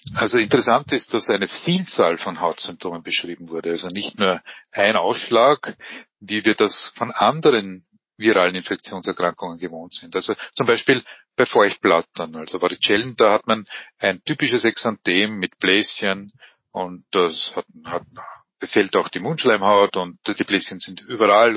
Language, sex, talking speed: German, male, 145 wpm